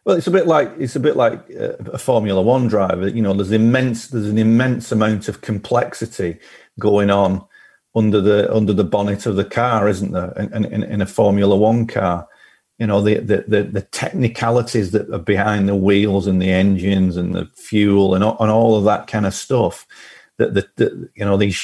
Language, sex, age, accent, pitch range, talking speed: English, male, 40-59, British, 100-115 Hz, 205 wpm